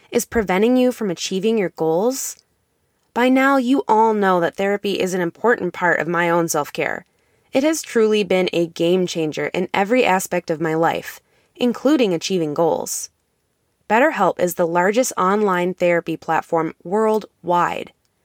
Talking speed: 150 wpm